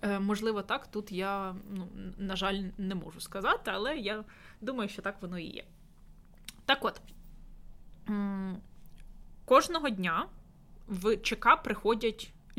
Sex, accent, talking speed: female, native, 120 wpm